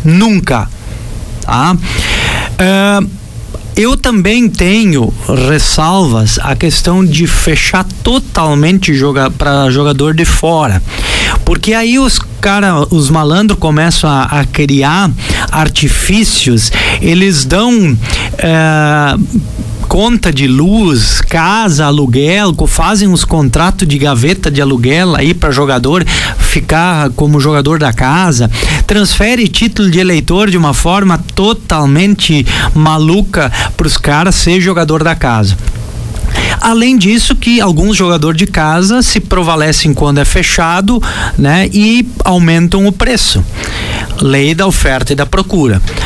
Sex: male